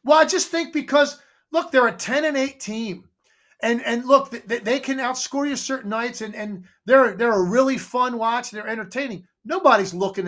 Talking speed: 200 wpm